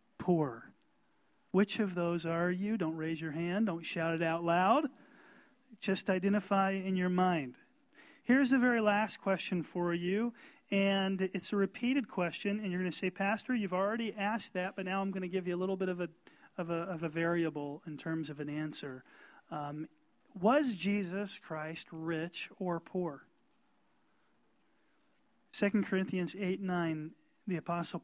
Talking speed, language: 165 wpm, English